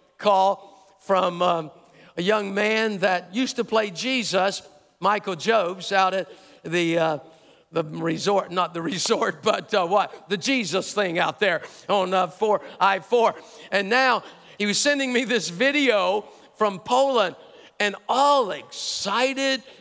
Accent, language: American, English